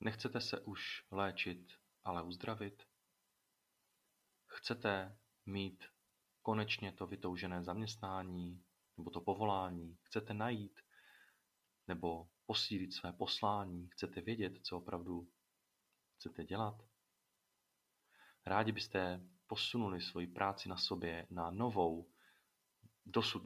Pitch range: 90-105 Hz